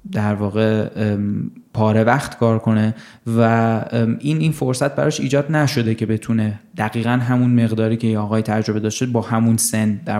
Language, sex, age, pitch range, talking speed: Persian, male, 20-39, 115-145 Hz, 155 wpm